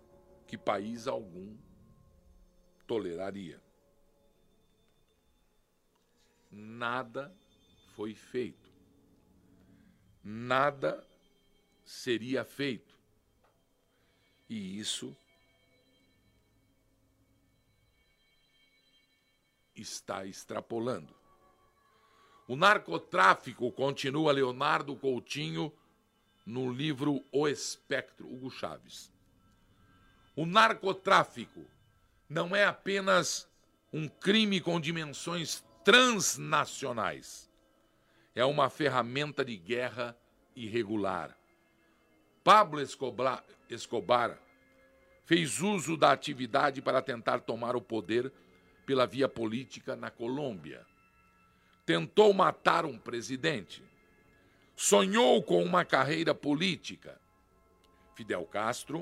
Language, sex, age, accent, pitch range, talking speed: Portuguese, male, 60-79, Brazilian, 95-145 Hz, 70 wpm